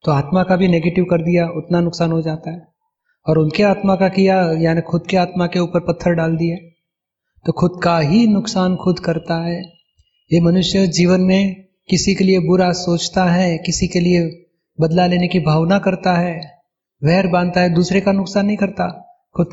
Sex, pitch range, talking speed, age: male, 170-195 Hz, 190 wpm, 30-49